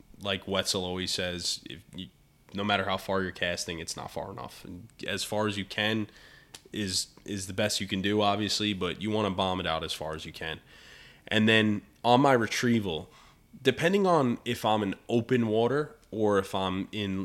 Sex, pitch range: male, 95-115 Hz